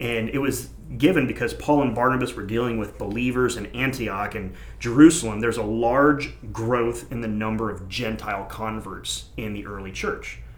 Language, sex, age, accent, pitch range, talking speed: English, male, 30-49, American, 105-130 Hz, 170 wpm